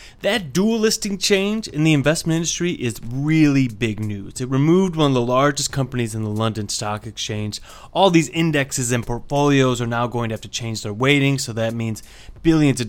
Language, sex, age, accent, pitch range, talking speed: English, male, 30-49, American, 110-145 Hz, 200 wpm